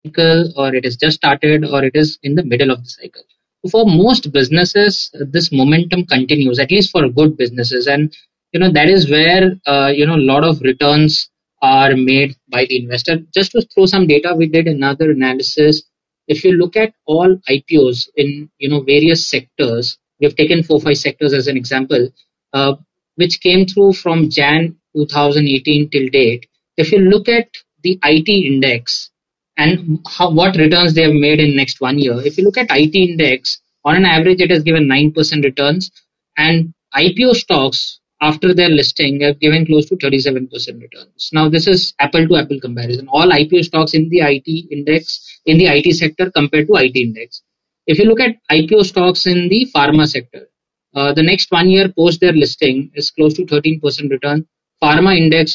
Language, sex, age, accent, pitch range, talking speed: English, male, 20-39, Indian, 140-175 Hz, 185 wpm